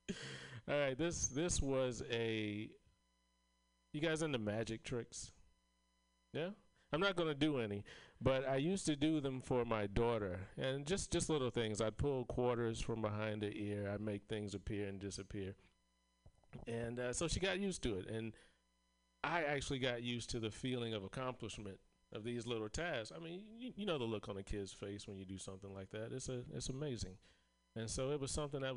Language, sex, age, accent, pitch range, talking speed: English, male, 40-59, American, 95-125 Hz, 195 wpm